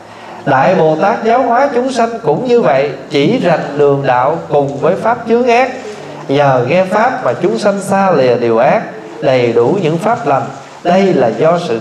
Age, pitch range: 20-39, 150-220 Hz